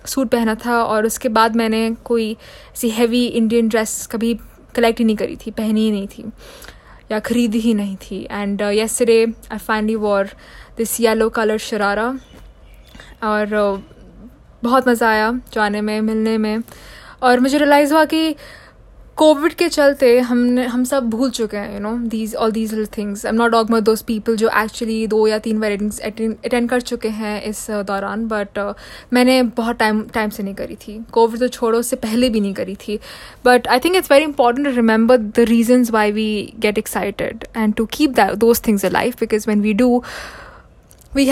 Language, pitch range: Hindi, 215-250 Hz